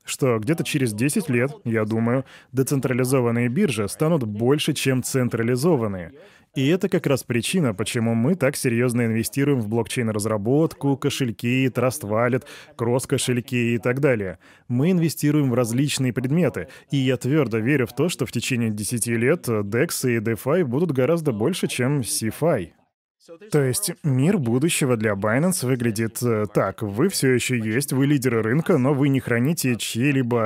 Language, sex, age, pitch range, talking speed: Russian, male, 20-39, 115-150 Hz, 150 wpm